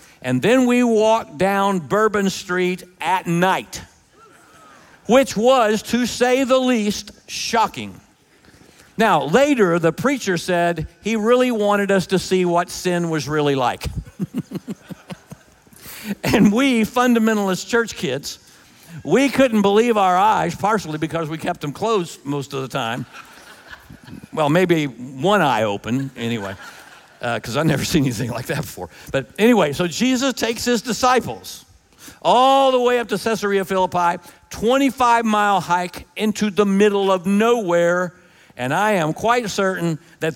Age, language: 50-69, English